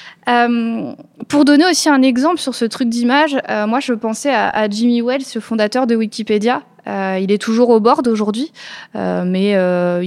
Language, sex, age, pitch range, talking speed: French, female, 20-39, 195-250 Hz, 190 wpm